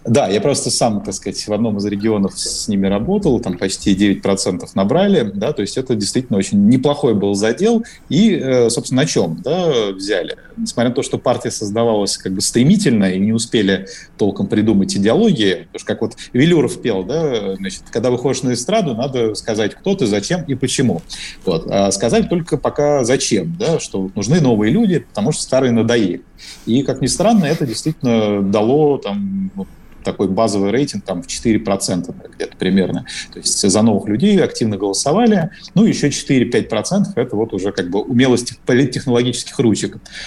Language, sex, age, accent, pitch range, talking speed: Russian, male, 30-49, native, 100-150 Hz, 175 wpm